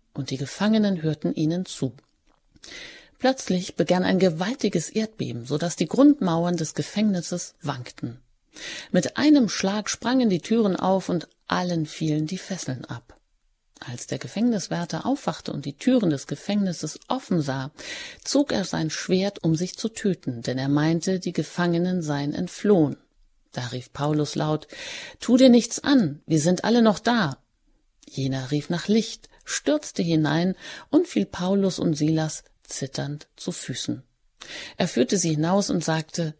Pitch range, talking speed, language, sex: 150-200 Hz, 150 wpm, German, female